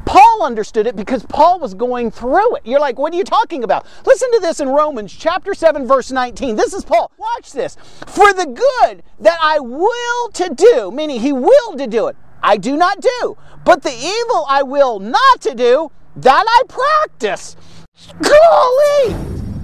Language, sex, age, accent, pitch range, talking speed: English, male, 40-59, American, 265-395 Hz, 180 wpm